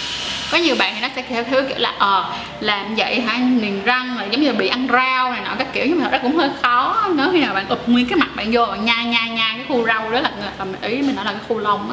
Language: Vietnamese